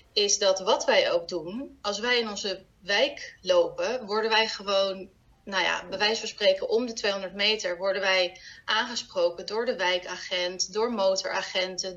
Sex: female